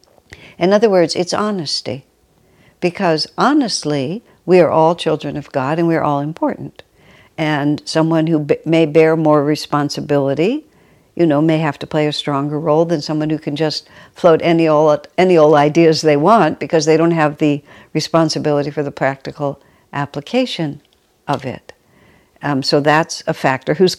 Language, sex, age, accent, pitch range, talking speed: English, female, 60-79, American, 150-175 Hz, 165 wpm